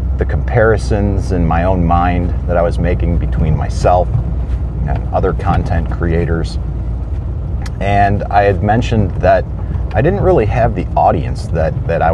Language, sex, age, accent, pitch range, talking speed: English, male, 40-59, American, 85-100 Hz, 145 wpm